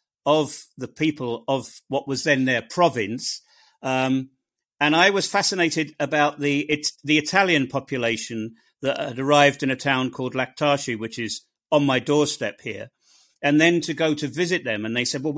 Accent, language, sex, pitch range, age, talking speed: British, English, male, 140-170 Hz, 50-69, 175 wpm